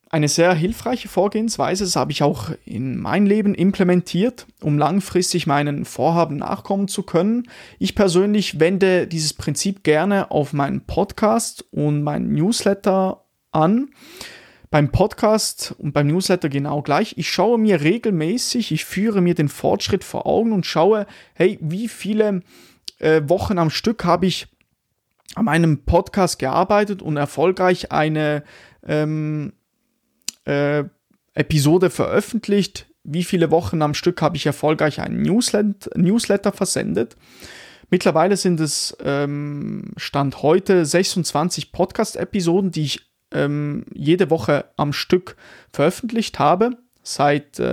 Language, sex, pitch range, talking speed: German, male, 150-205 Hz, 125 wpm